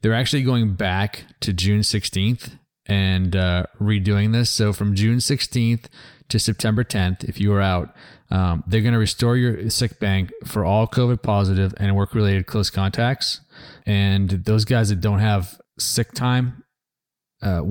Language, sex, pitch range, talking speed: English, male, 100-120 Hz, 160 wpm